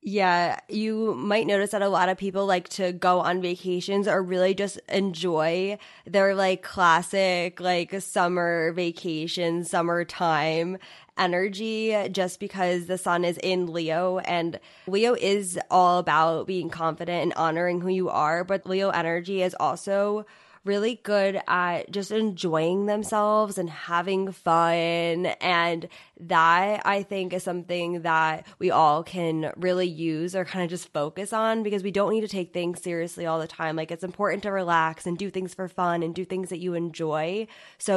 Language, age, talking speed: English, 10-29, 165 wpm